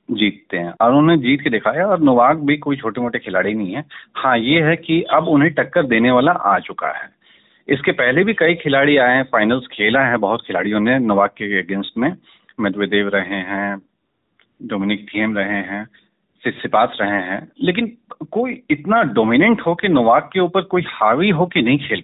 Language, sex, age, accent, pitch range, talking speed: Hindi, male, 40-59, native, 105-160 Hz, 190 wpm